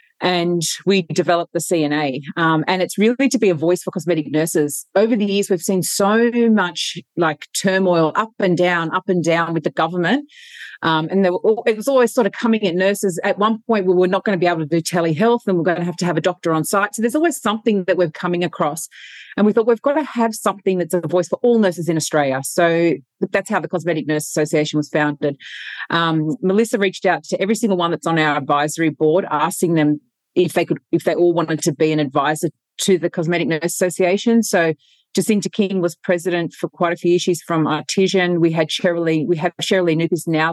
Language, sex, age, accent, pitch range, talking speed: English, female, 30-49, Australian, 165-195 Hz, 230 wpm